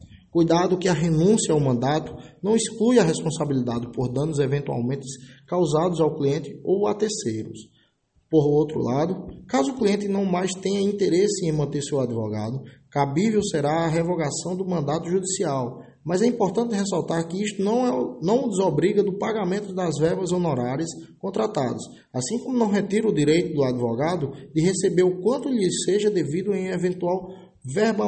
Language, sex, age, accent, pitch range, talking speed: English, male, 20-39, Brazilian, 130-185 Hz, 155 wpm